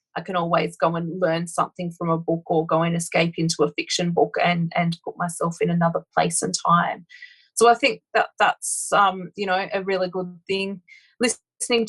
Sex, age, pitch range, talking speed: female, 30-49, 170-200 Hz, 200 wpm